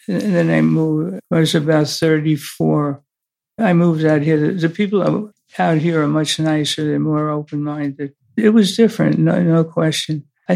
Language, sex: English, male